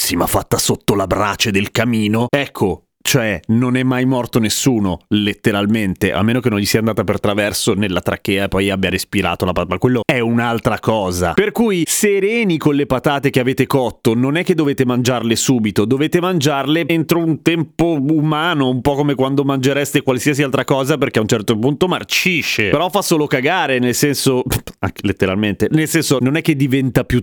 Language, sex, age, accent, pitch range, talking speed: Italian, male, 30-49, native, 100-145 Hz, 190 wpm